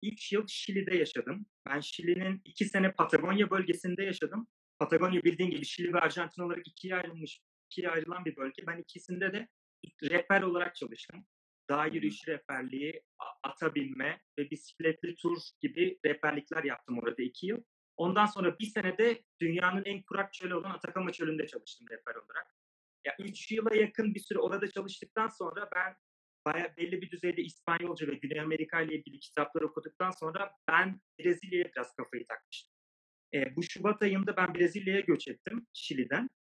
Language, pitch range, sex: Turkish, 155-200 Hz, male